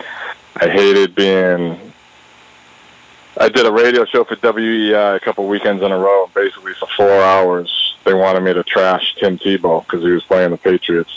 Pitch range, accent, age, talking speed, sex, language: 85-100 Hz, American, 20-39, 175 wpm, male, English